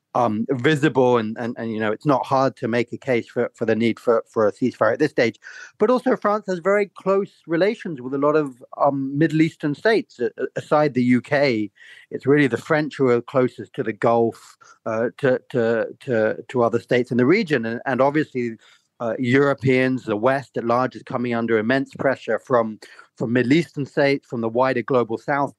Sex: male